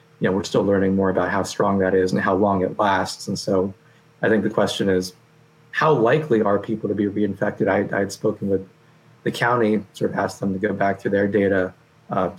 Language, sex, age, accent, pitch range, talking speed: English, male, 30-49, American, 95-115 Hz, 230 wpm